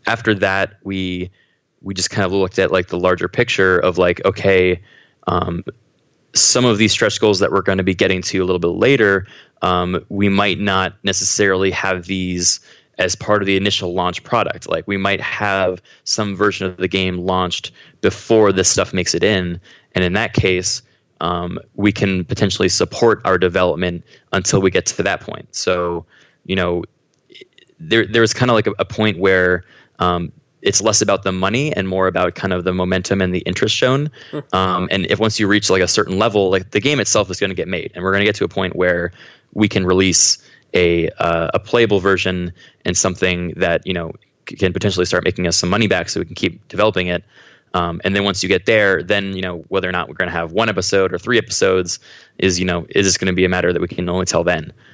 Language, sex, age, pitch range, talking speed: English, male, 20-39, 90-100 Hz, 220 wpm